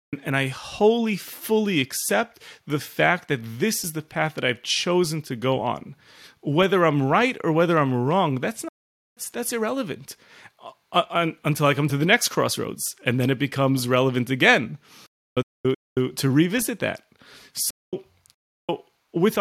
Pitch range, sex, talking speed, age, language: 130-190 Hz, male, 150 wpm, 30-49, English